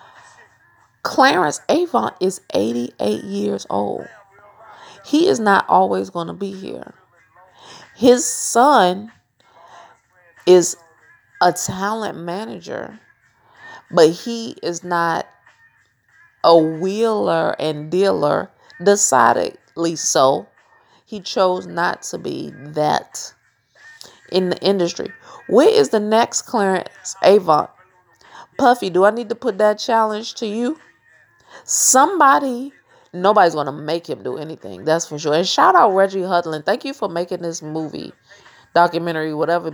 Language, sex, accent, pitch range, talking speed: English, female, American, 160-215 Hz, 120 wpm